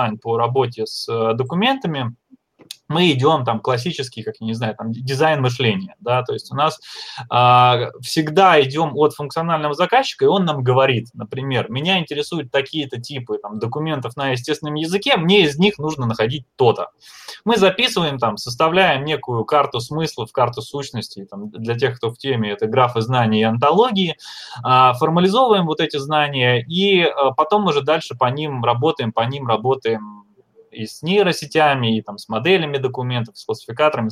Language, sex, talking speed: Russian, male, 155 wpm